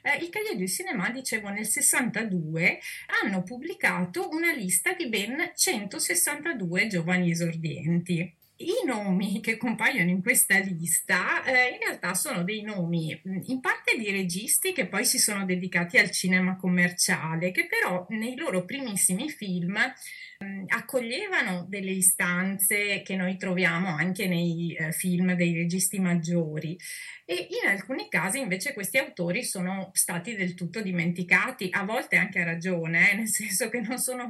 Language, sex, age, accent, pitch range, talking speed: Italian, female, 30-49, native, 180-230 Hz, 140 wpm